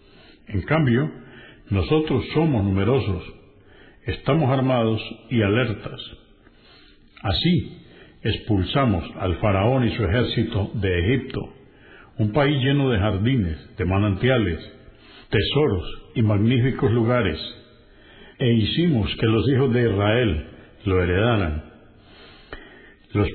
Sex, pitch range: male, 95-125 Hz